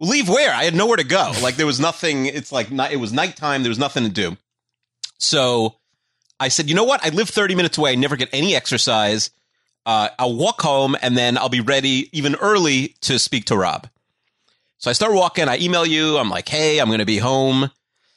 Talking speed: 220 wpm